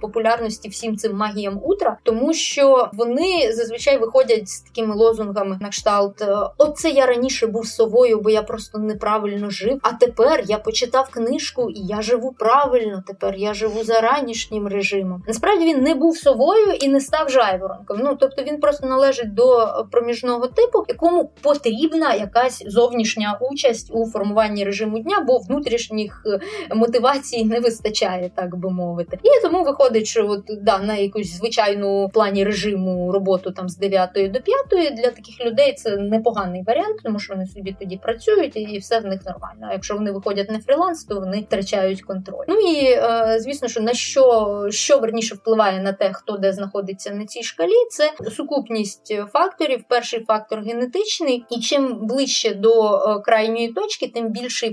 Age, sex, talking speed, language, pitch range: 20-39, female, 165 wpm, Ukrainian, 205-265 Hz